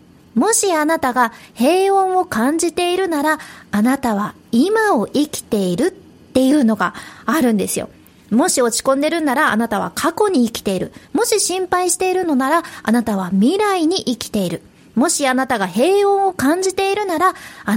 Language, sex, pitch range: Japanese, female, 230-375 Hz